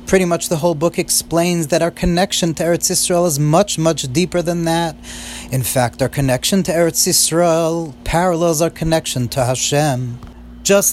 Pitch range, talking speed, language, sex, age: 140-175 Hz, 170 wpm, English, male, 30-49